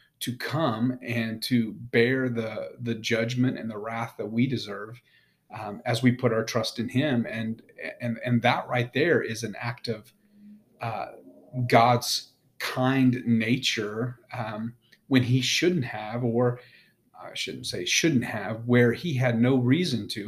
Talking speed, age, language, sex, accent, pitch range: 155 wpm, 40-59, English, male, American, 115-125 Hz